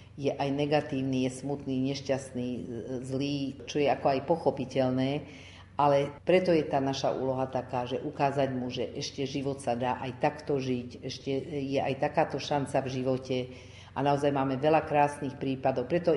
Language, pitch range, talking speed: Slovak, 130-155 Hz, 165 wpm